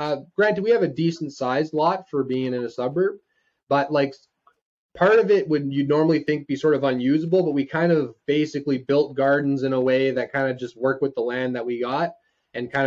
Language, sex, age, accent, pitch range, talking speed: English, male, 20-39, American, 125-155 Hz, 230 wpm